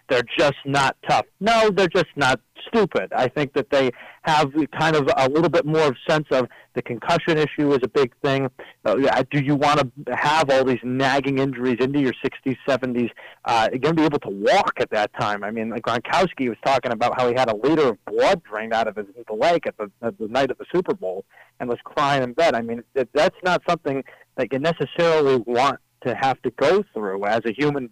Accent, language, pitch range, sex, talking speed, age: American, English, 120-155 Hz, male, 220 wpm, 40-59